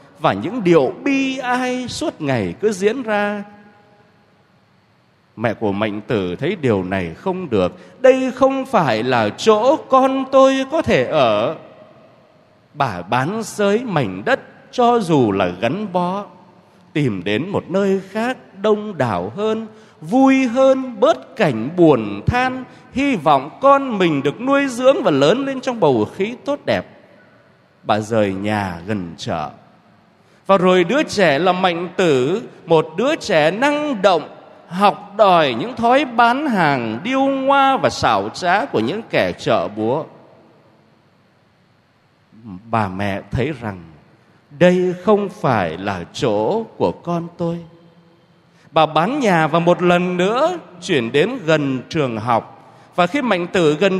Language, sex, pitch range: Vietnamese, male, 155-250 Hz